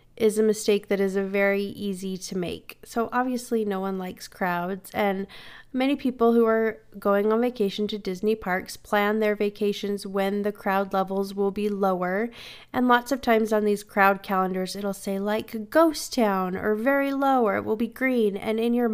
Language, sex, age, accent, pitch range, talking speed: English, female, 30-49, American, 200-240 Hz, 195 wpm